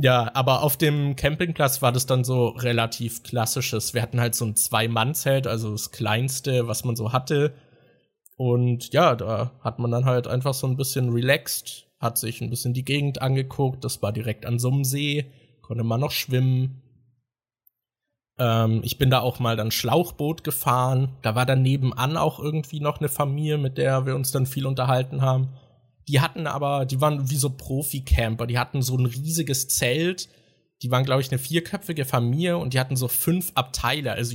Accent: German